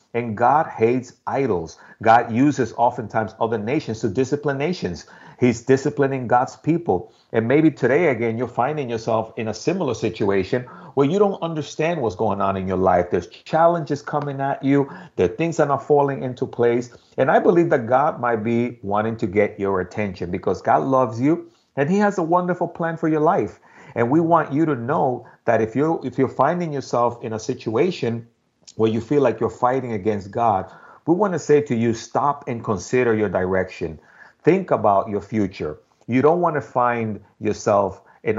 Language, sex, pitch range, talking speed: English, male, 110-145 Hz, 190 wpm